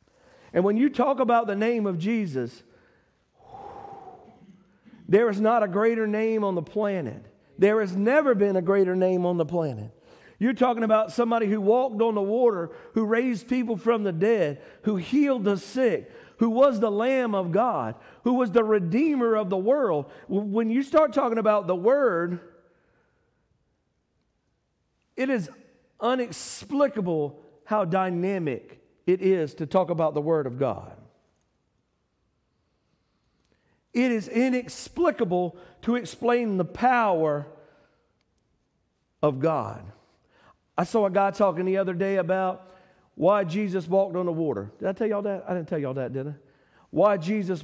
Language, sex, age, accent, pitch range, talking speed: English, male, 50-69, American, 155-230 Hz, 155 wpm